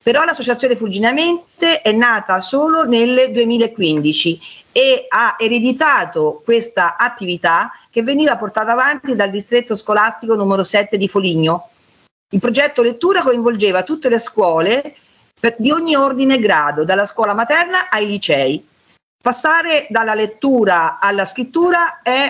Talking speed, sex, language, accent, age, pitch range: 125 wpm, female, Italian, native, 50-69, 205-295 Hz